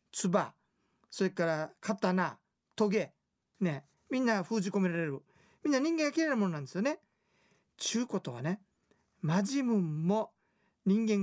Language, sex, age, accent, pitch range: Japanese, male, 40-59, native, 165-220 Hz